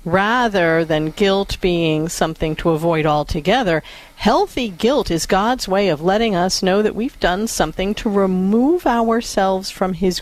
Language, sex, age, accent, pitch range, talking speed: English, female, 50-69, American, 175-230 Hz, 155 wpm